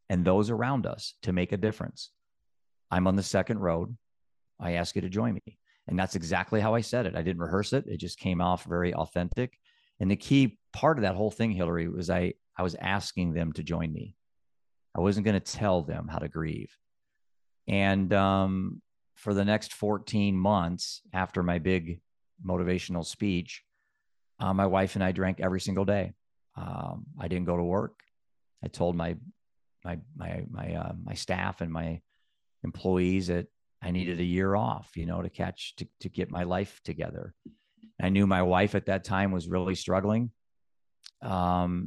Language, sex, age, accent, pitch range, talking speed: English, male, 50-69, American, 85-100 Hz, 185 wpm